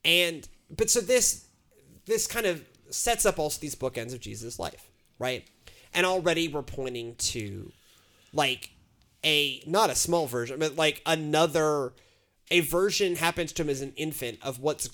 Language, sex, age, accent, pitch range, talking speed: English, male, 30-49, American, 125-165 Hz, 160 wpm